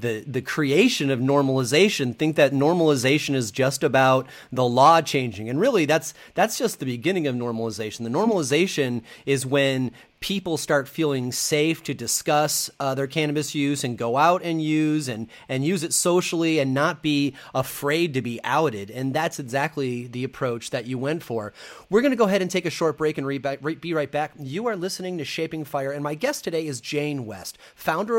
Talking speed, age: 200 wpm, 30-49